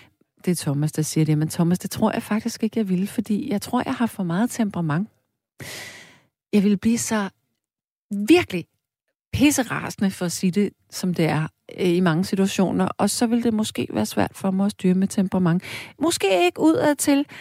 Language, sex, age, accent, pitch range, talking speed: Danish, female, 40-59, native, 170-240 Hz, 190 wpm